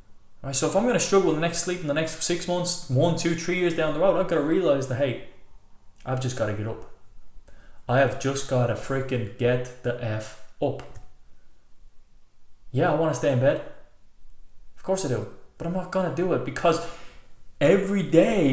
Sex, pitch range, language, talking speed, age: male, 105-145 Hz, English, 205 wpm, 20-39